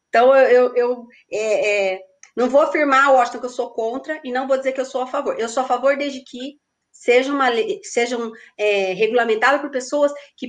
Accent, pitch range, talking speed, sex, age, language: Brazilian, 230-340 Hz, 210 wpm, female, 30-49, Portuguese